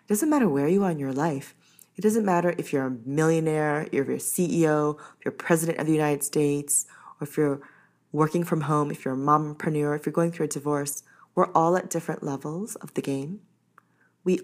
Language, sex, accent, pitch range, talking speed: English, female, American, 145-180 Hz, 215 wpm